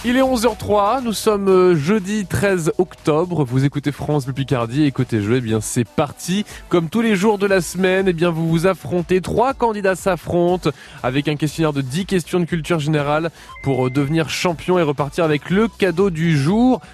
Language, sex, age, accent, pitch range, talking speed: French, male, 20-39, French, 140-190 Hz, 190 wpm